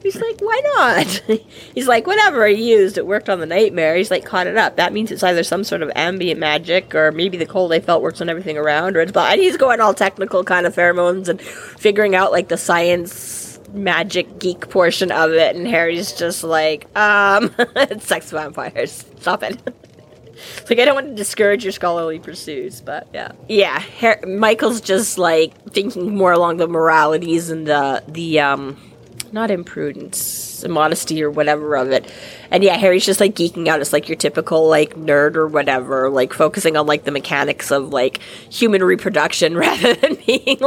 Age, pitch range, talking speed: 30-49, 155-205 Hz, 190 wpm